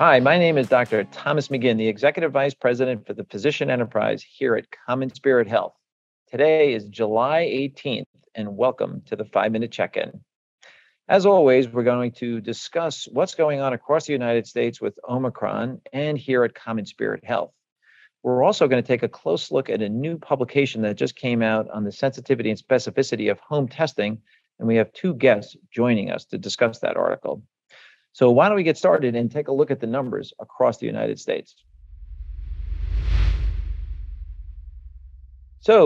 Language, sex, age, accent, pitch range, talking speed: English, male, 50-69, American, 105-140 Hz, 170 wpm